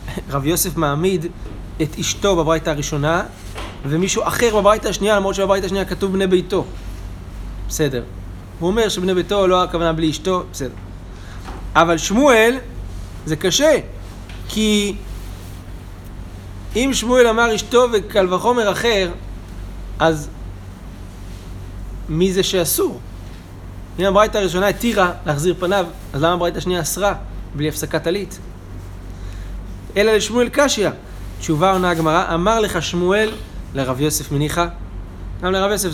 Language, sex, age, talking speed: Hebrew, male, 30-49, 120 wpm